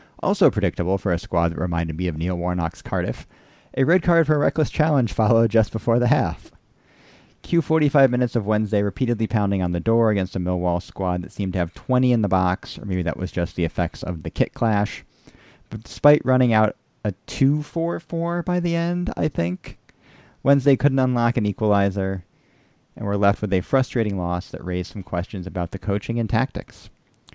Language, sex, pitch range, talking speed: English, male, 95-120 Hz, 200 wpm